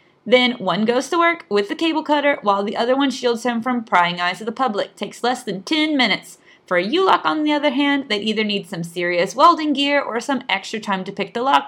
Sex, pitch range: female, 200-285 Hz